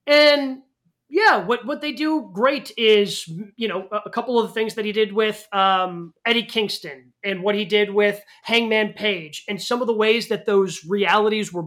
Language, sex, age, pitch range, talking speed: English, male, 30-49, 205-270 Hz, 195 wpm